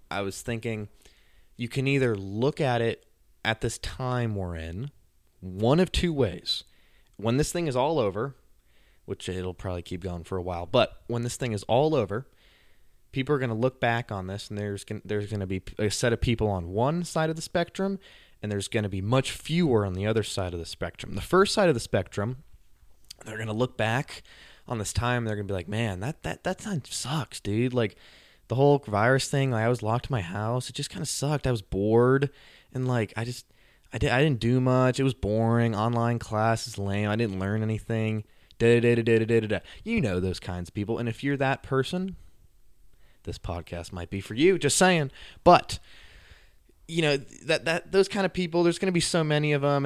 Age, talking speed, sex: 20-39, 225 wpm, male